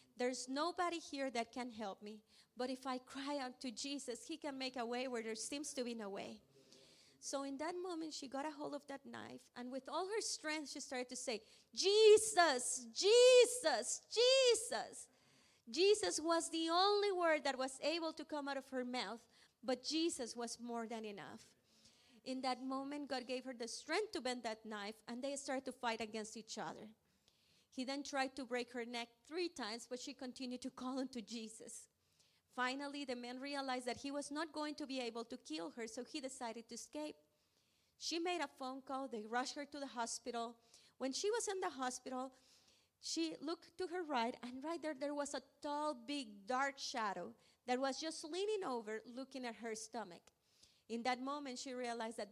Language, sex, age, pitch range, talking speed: English, female, 30-49, 235-300 Hz, 200 wpm